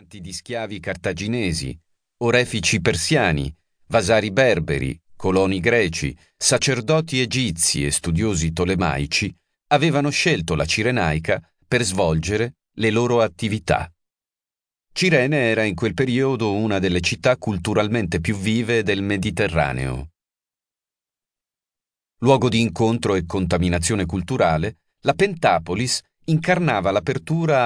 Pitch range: 90-130 Hz